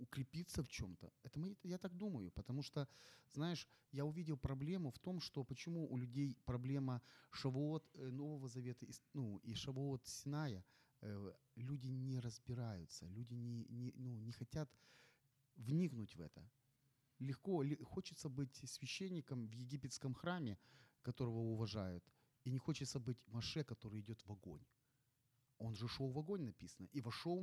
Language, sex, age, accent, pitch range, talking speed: Ukrainian, male, 30-49, native, 120-140 Hz, 145 wpm